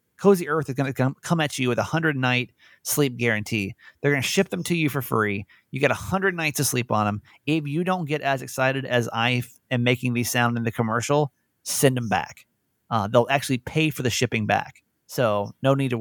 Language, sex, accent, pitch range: English, male, American, 120-155 Hz